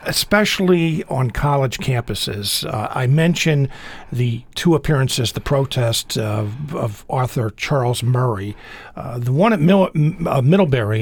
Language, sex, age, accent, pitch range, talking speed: English, male, 50-69, American, 125-160 Hz, 130 wpm